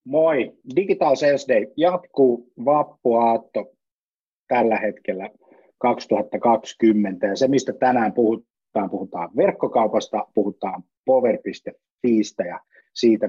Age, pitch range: 30-49, 110-150 Hz